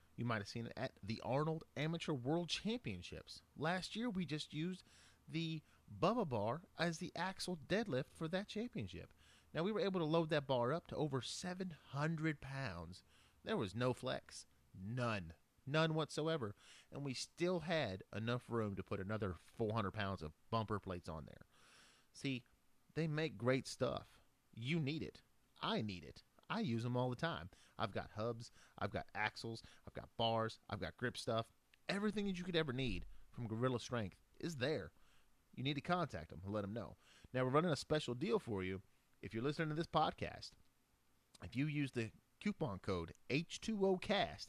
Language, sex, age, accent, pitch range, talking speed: English, male, 30-49, American, 110-160 Hz, 180 wpm